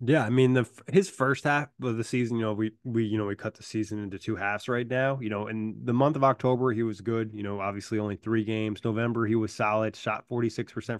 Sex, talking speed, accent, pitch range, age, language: male, 265 wpm, American, 115-130 Hz, 20-39, English